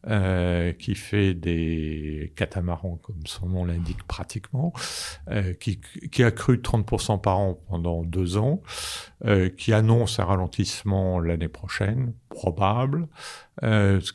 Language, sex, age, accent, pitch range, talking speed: French, male, 50-69, French, 90-115 Hz, 130 wpm